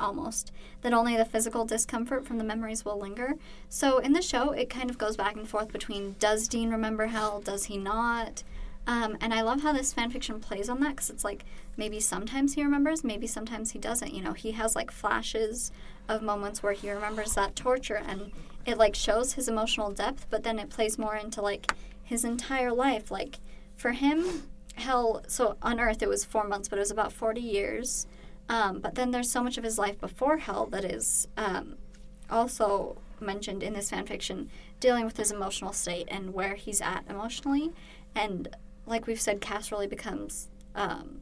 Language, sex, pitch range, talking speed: English, male, 205-240 Hz, 200 wpm